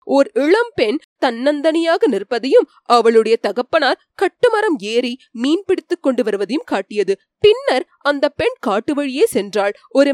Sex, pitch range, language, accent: female, 215-350 Hz, Tamil, native